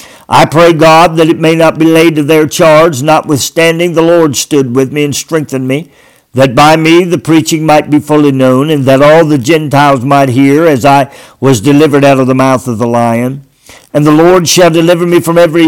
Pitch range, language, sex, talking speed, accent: 145-185 Hz, English, male, 215 wpm, American